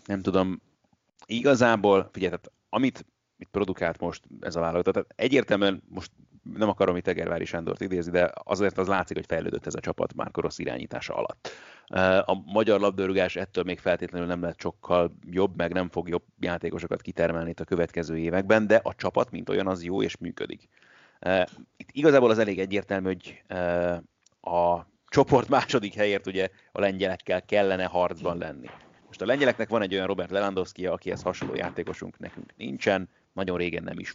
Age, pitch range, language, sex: 30-49, 90-105 Hz, Hungarian, male